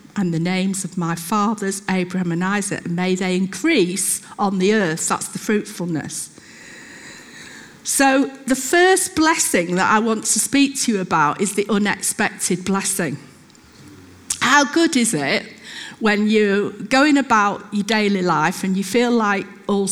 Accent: British